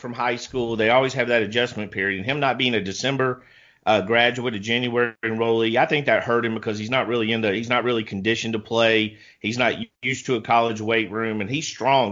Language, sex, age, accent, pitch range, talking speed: English, male, 40-59, American, 110-125 Hz, 240 wpm